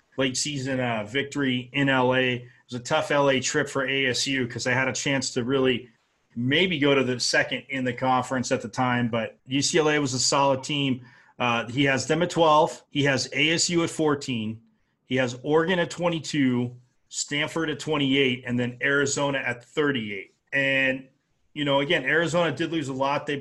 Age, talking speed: 30-49, 185 wpm